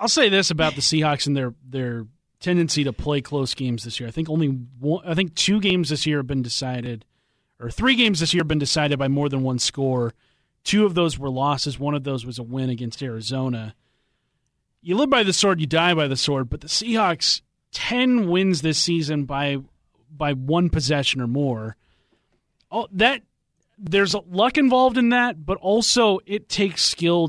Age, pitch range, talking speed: 30-49, 135-175 Hz, 200 wpm